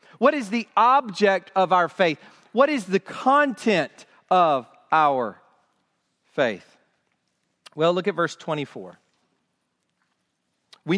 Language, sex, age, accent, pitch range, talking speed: English, male, 40-59, American, 160-210 Hz, 110 wpm